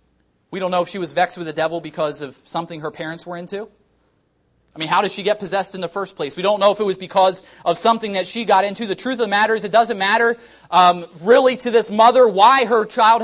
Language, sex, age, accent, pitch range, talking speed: English, male, 30-49, American, 165-245 Hz, 265 wpm